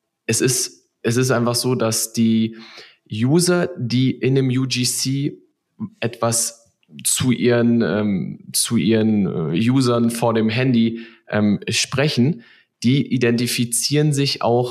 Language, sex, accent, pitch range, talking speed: German, male, German, 110-125 Hz, 120 wpm